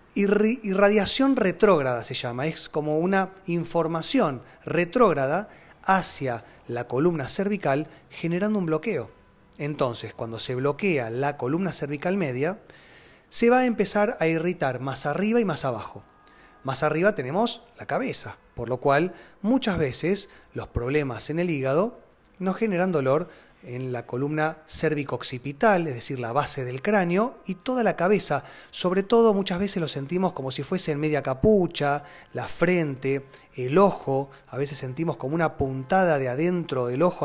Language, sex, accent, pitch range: Spanish, male, Argentinian, 135-185 Hz